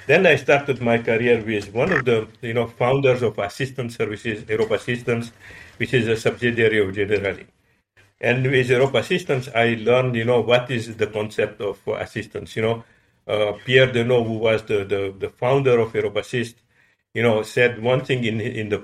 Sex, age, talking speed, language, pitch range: male, 50-69, 190 wpm, English, 105-120 Hz